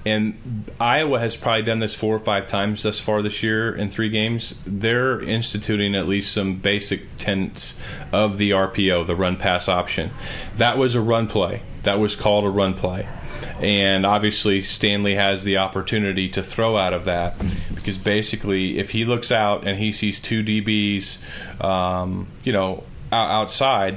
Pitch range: 95-110 Hz